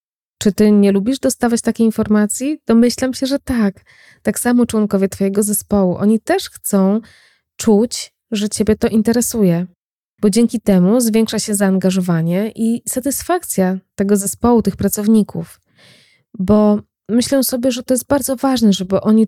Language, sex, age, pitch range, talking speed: Polish, female, 20-39, 190-230 Hz, 145 wpm